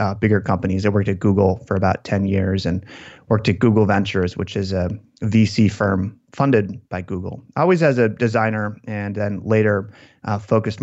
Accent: American